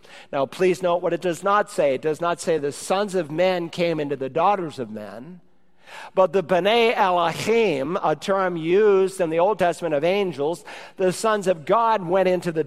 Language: English